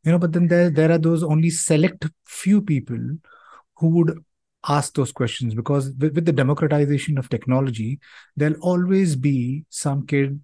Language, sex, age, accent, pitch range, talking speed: English, male, 30-49, Indian, 125-165 Hz, 165 wpm